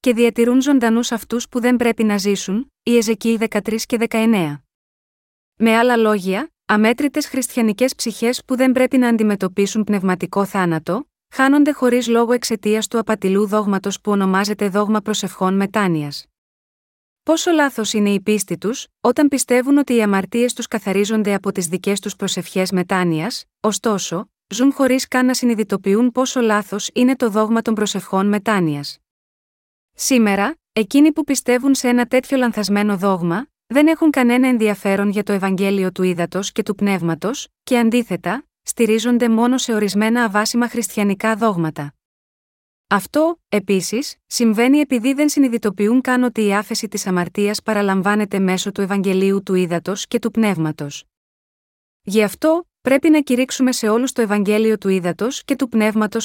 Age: 30-49